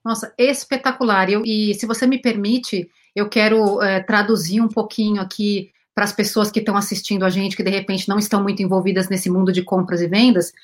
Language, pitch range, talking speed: Portuguese, 200-245 Hz, 205 wpm